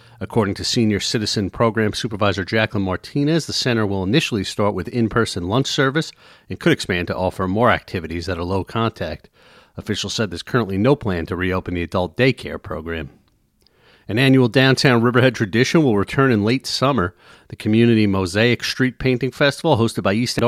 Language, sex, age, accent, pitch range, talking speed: English, male, 40-59, American, 95-130 Hz, 175 wpm